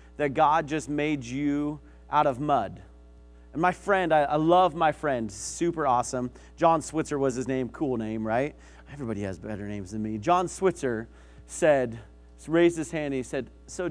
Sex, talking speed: male, 180 wpm